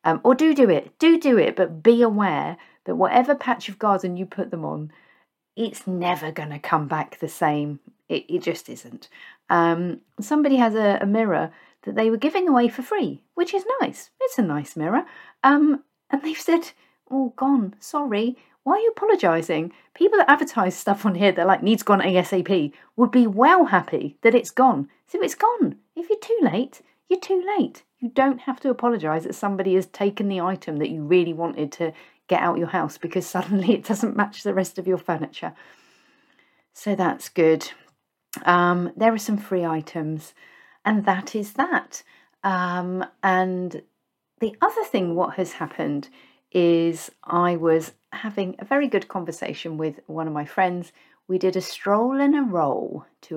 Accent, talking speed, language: British, 185 wpm, English